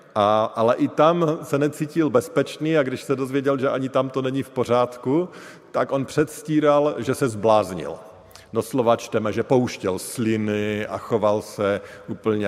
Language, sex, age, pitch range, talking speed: Slovak, male, 40-59, 100-135 Hz, 160 wpm